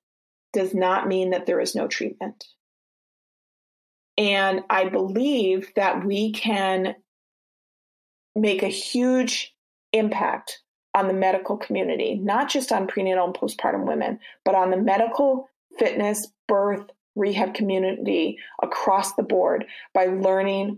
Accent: American